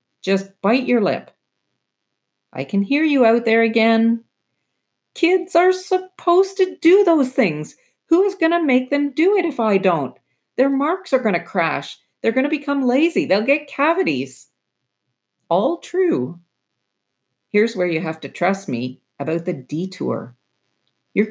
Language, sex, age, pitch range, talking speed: English, female, 50-69, 145-240 Hz, 160 wpm